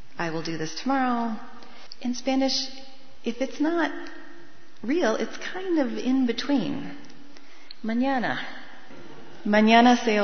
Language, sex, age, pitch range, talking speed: English, female, 30-49, 175-255 Hz, 110 wpm